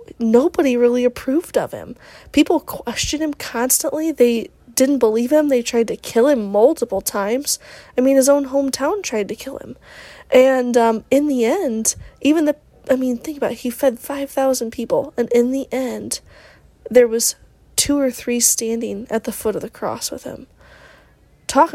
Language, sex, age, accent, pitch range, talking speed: English, female, 20-39, American, 230-280 Hz, 175 wpm